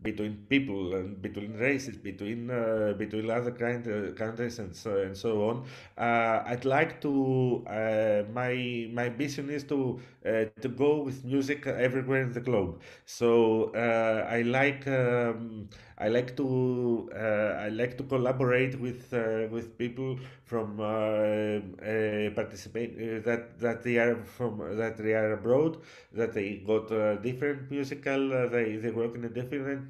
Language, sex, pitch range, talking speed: English, male, 115-135 Hz, 160 wpm